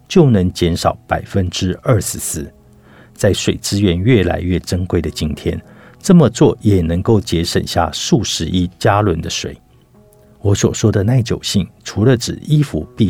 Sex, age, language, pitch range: male, 50-69, Chinese, 90-125 Hz